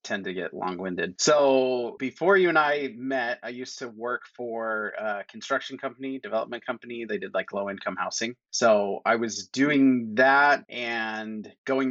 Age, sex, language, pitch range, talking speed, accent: 30-49, male, English, 105-130 Hz, 170 wpm, American